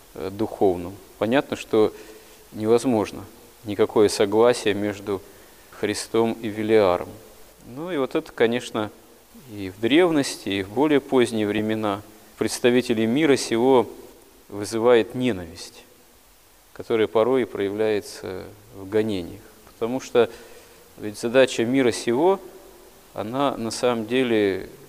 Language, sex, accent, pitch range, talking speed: Russian, male, native, 105-125 Hz, 105 wpm